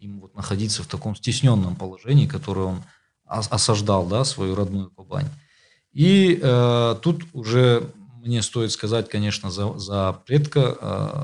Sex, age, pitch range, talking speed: male, 20-39, 105-140 Hz, 135 wpm